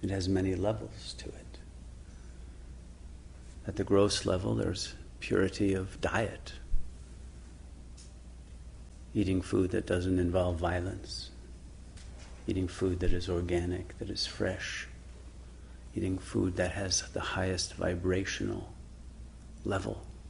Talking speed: 105 wpm